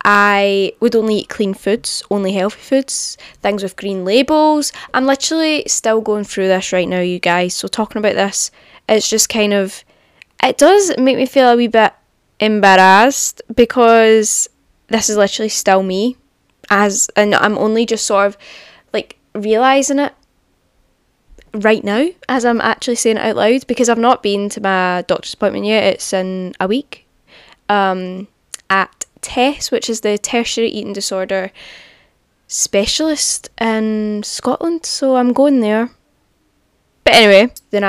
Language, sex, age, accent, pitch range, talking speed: English, female, 10-29, British, 195-250 Hz, 155 wpm